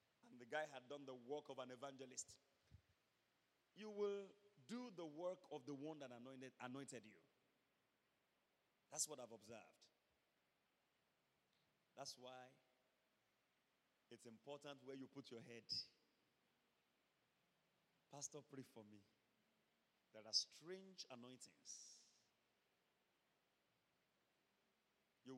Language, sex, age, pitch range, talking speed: English, male, 40-59, 130-190 Hz, 100 wpm